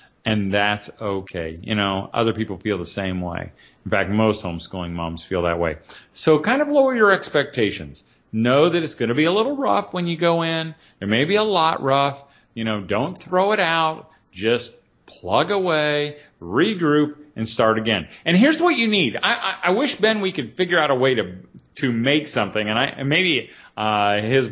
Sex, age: male, 40-59